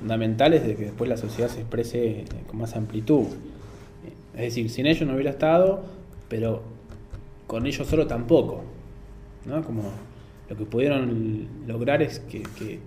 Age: 20-39